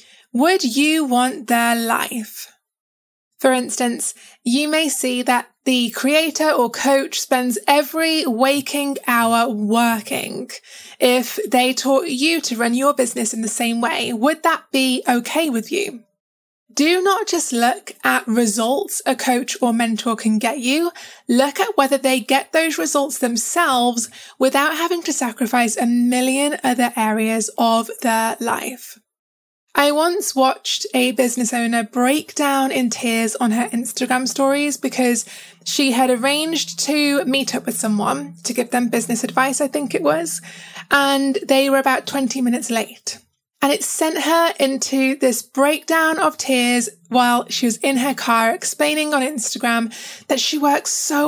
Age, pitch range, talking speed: 10-29, 235-285 Hz, 155 wpm